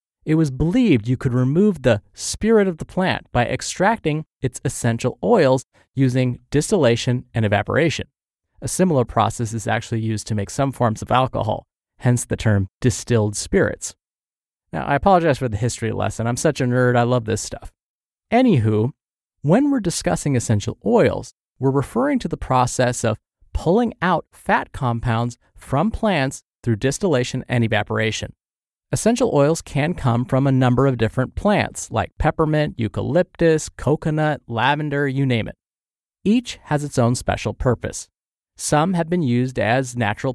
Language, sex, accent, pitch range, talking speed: English, male, American, 115-150 Hz, 155 wpm